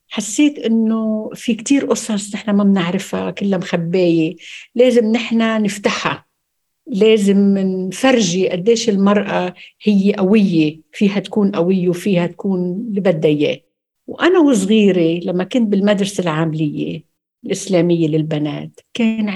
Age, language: 60-79, Arabic